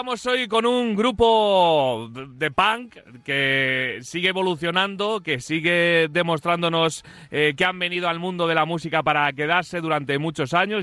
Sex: male